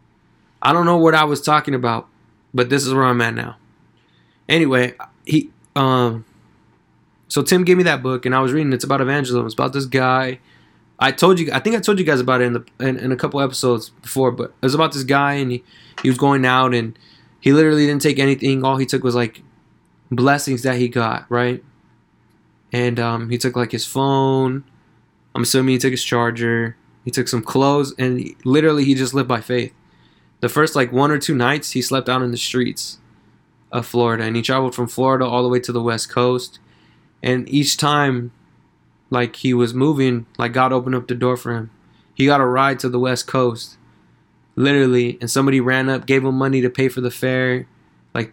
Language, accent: English, American